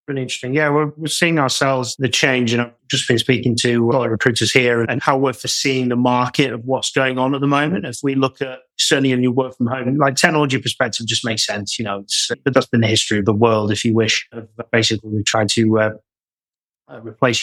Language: English